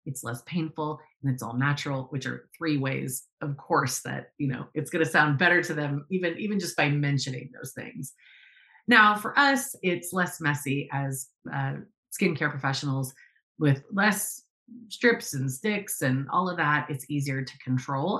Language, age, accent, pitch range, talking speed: English, 30-49, American, 135-185 Hz, 175 wpm